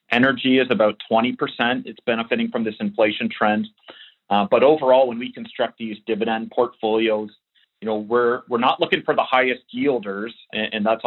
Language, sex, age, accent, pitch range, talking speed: English, male, 30-49, American, 100-120 Hz, 175 wpm